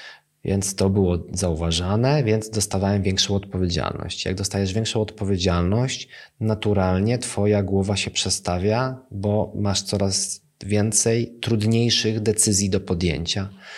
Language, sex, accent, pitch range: Polish, male, native, 95-105 Hz